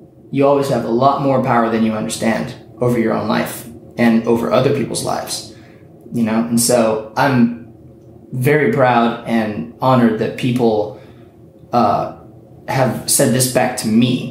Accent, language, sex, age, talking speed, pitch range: American, English, male, 20-39, 155 wpm, 110-125 Hz